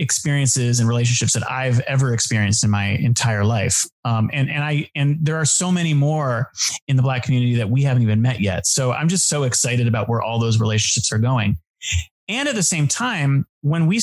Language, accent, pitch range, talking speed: English, American, 120-155 Hz, 215 wpm